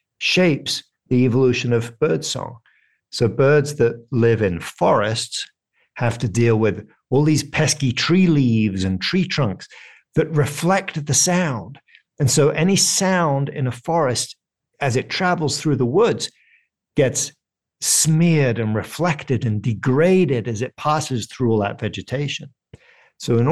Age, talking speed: 50-69, 145 wpm